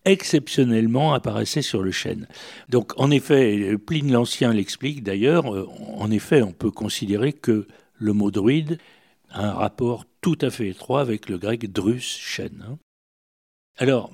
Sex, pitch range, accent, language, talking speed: male, 110-140 Hz, French, French, 145 wpm